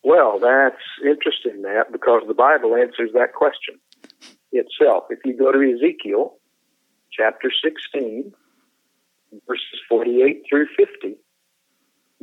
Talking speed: 105 wpm